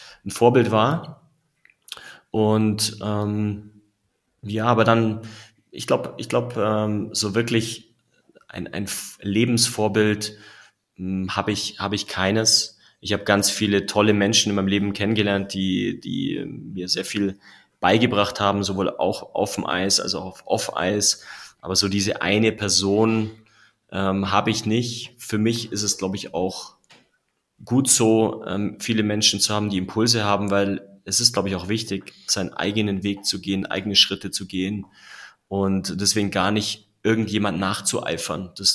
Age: 30-49